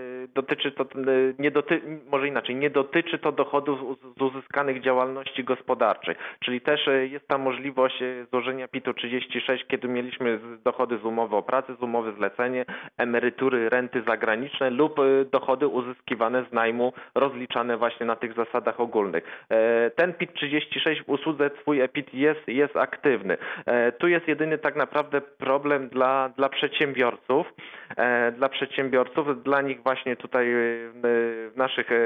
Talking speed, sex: 135 wpm, male